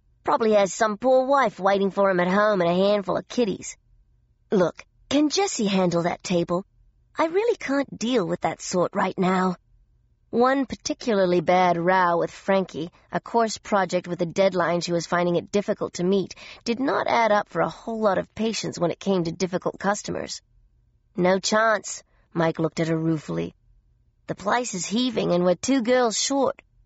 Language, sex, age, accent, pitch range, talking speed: English, female, 40-59, American, 175-235 Hz, 180 wpm